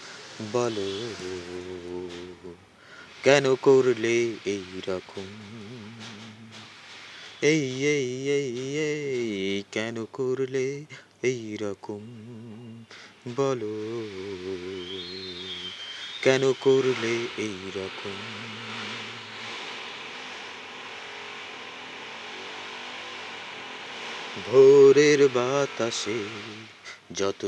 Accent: native